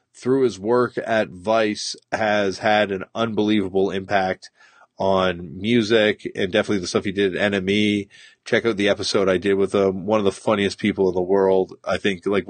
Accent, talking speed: American, 190 wpm